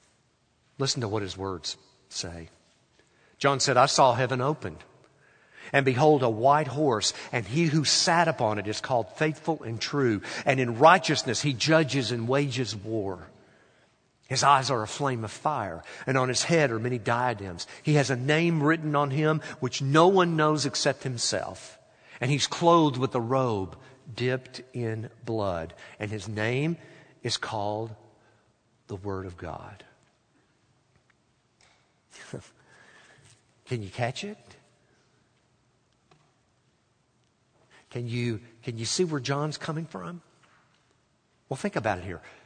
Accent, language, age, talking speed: American, English, 50-69, 140 wpm